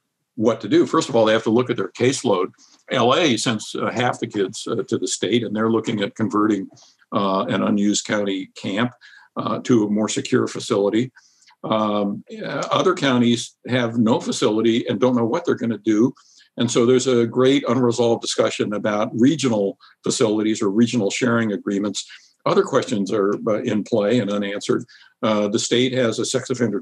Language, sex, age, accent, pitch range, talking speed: English, male, 60-79, American, 105-125 Hz, 180 wpm